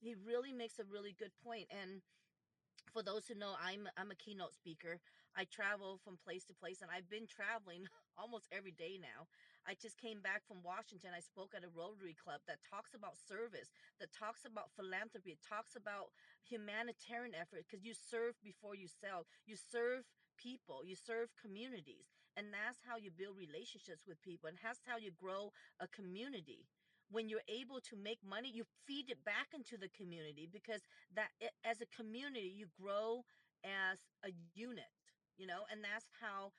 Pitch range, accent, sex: 190-230 Hz, American, female